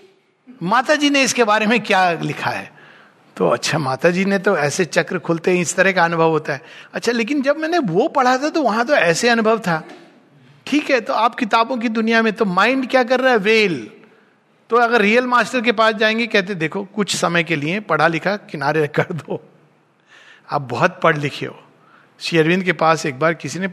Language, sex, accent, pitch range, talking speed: Hindi, male, native, 170-250 Hz, 195 wpm